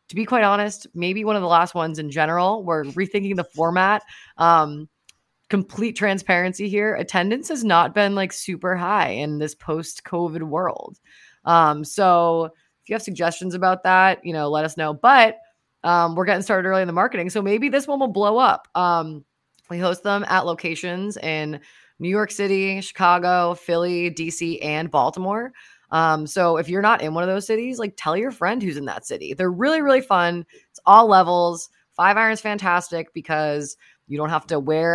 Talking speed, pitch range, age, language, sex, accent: 190 wpm, 155-205 Hz, 20-39, English, female, American